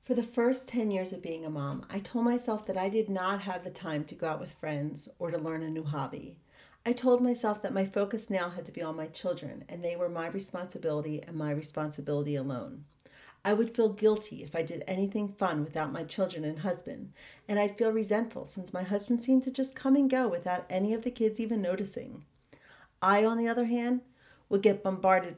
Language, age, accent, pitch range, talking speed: English, 40-59, American, 175-215 Hz, 220 wpm